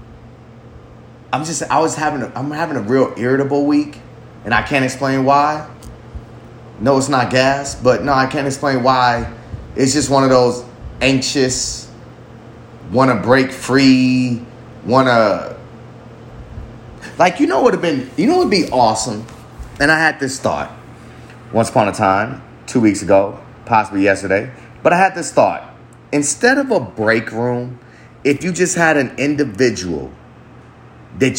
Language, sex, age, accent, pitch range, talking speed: English, male, 30-49, American, 120-155 Hz, 155 wpm